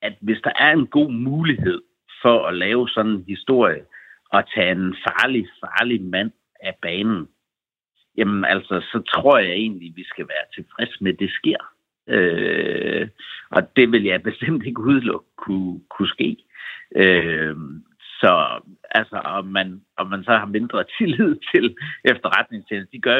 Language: Danish